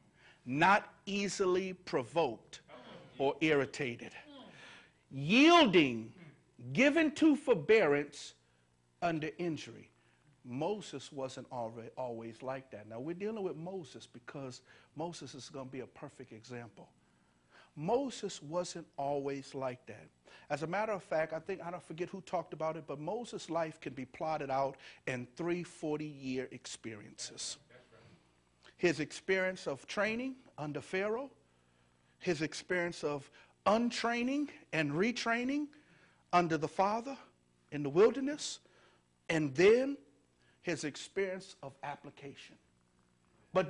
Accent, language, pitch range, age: American, English, 135-195 Hz, 50-69